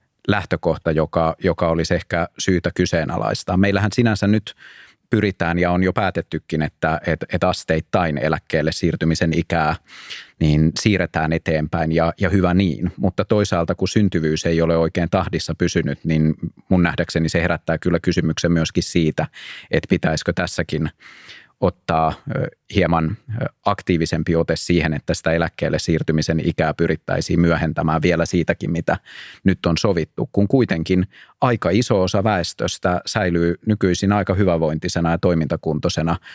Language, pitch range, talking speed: Finnish, 80-95 Hz, 125 wpm